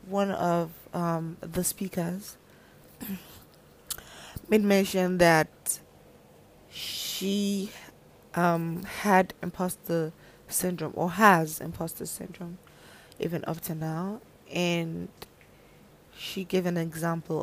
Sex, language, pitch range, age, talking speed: female, English, 165-195 Hz, 20-39, 90 wpm